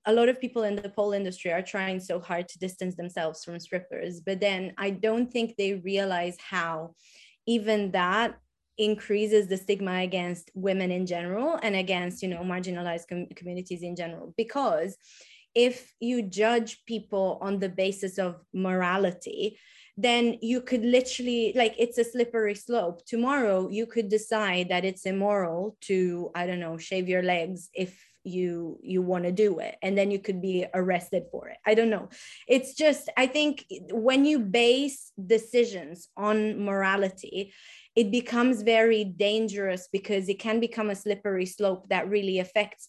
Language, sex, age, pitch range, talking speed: English, female, 20-39, 185-225 Hz, 165 wpm